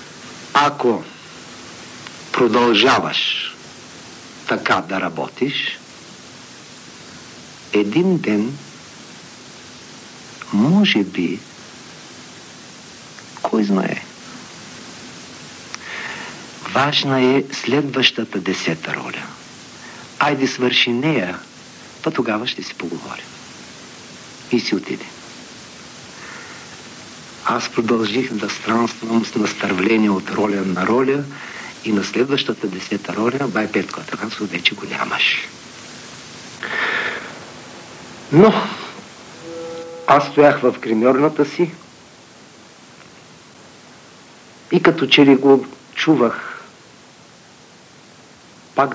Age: 60-79